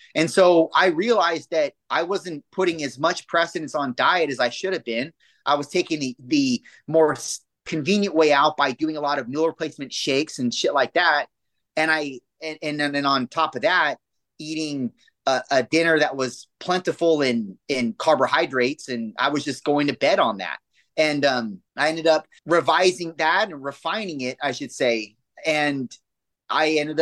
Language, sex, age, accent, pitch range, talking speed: English, male, 30-49, American, 140-185 Hz, 185 wpm